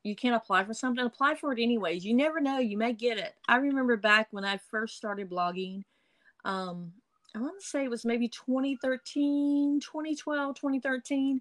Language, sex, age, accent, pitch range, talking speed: English, female, 30-49, American, 190-255 Hz, 175 wpm